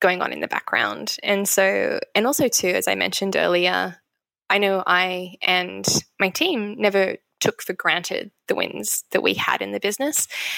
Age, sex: 10-29, female